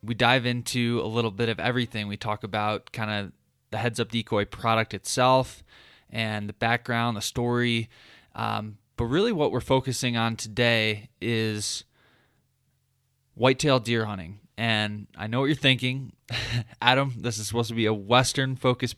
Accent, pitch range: American, 105-125 Hz